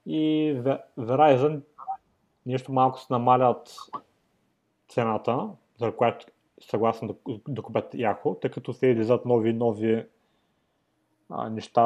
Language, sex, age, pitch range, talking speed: Bulgarian, male, 30-49, 105-125 Hz, 120 wpm